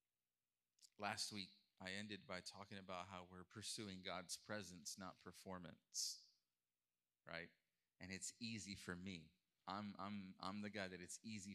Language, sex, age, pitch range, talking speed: English, male, 30-49, 85-100 Hz, 145 wpm